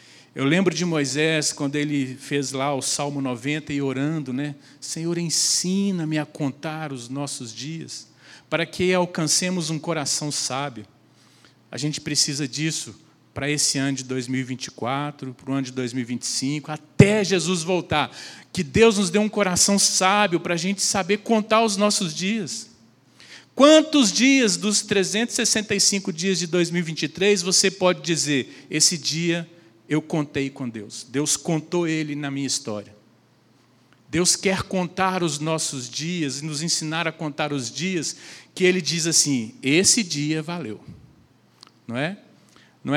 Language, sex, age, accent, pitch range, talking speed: Portuguese, male, 40-59, Brazilian, 135-175 Hz, 145 wpm